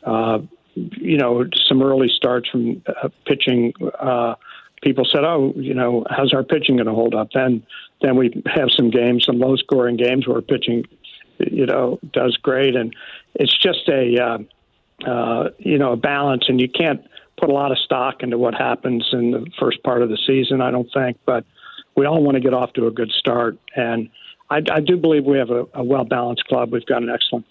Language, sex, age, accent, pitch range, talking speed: English, male, 60-79, American, 120-135 Hz, 205 wpm